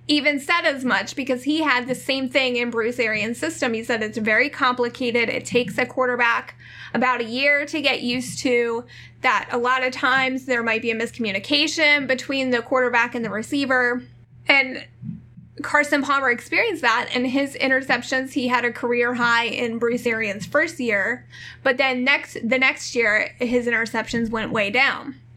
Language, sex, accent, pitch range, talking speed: English, female, American, 235-275 Hz, 175 wpm